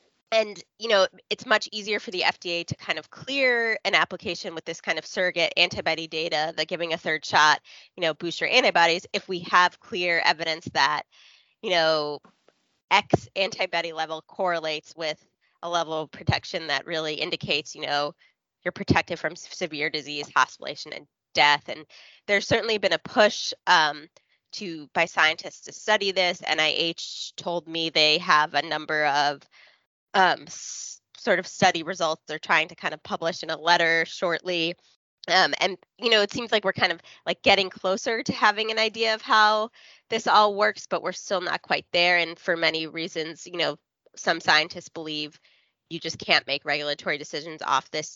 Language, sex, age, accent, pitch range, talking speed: English, female, 20-39, American, 155-195 Hz, 180 wpm